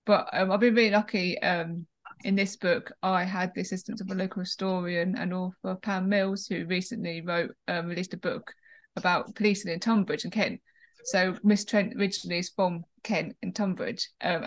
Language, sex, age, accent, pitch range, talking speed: English, female, 20-39, British, 185-215 Hz, 190 wpm